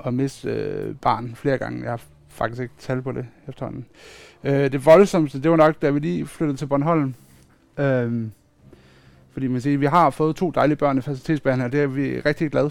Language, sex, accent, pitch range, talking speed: Danish, male, native, 120-155 Hz, 195 wpm